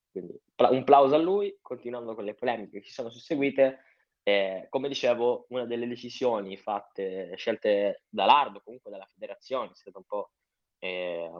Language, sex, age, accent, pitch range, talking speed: Italian, male, 10-29, native, 100-130 Hz, 160 wpm